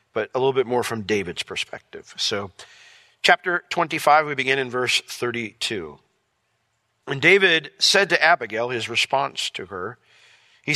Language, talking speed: English, 145 wpm